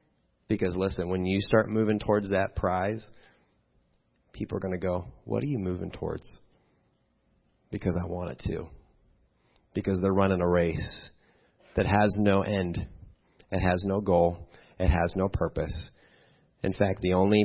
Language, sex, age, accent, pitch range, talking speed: English, male, 30-49, American, 85-100 Hz, 155 wpm